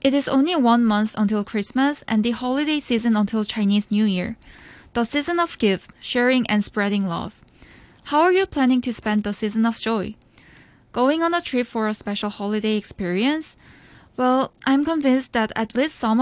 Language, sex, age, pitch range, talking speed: English, female, 10-29, 210-250 Hz, 180 wpm